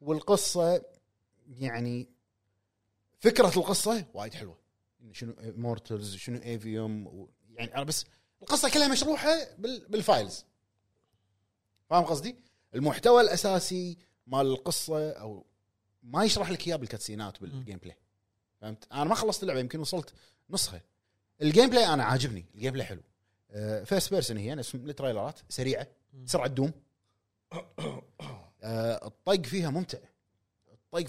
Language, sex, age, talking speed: Arabic, male, 30-49, 115 wpm